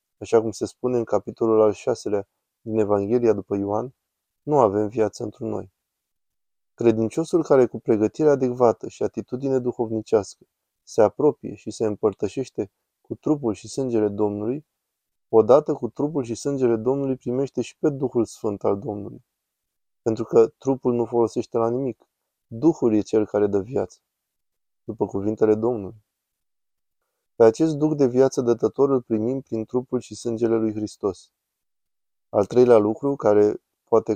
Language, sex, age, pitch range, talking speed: Romanian, male, 20-39, 110-130 Hz, 145 wpm